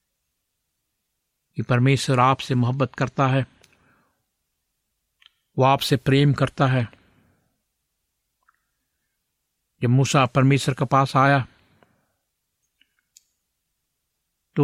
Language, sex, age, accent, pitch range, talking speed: Hindi, male, 60-79, native, 115-140 Hz, 70 wpm